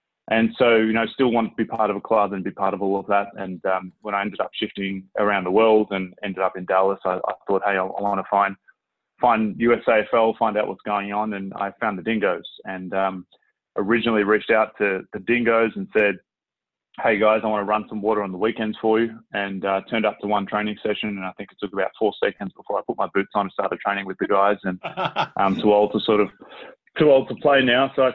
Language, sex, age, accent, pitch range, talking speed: English, male, 20-39, Australian, 95-110 Hz, 255 wpm